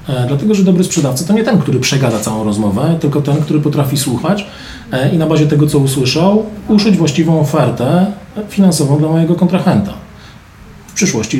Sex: male